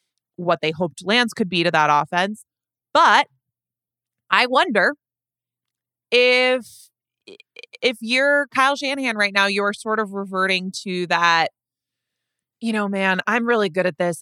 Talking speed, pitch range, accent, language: 140 wpm, 145-200 Hz, American, English